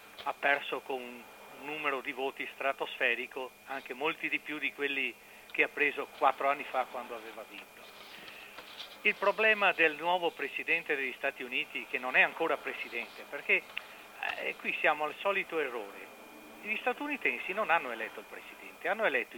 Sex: male